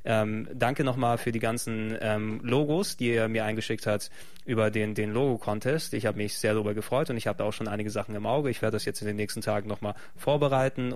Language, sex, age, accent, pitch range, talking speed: German, male, 20-39, German, 110-125 Hz, 235 wpm